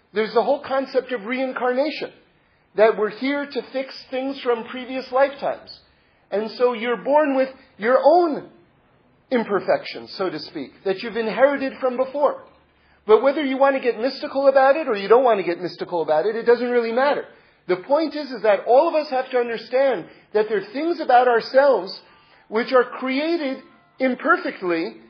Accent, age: American, 40-59